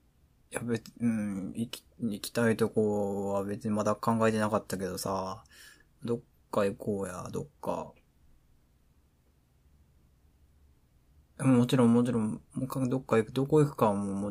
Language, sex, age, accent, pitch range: Japanese, male, 20-39, Korean, 70-110 Hz